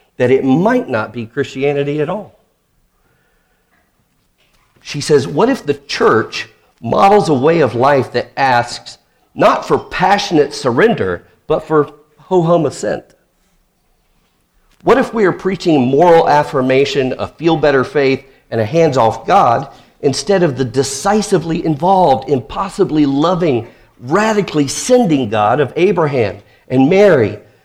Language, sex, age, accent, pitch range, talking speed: English, male, 50-69, American, 125-180 Hz, 125 wpm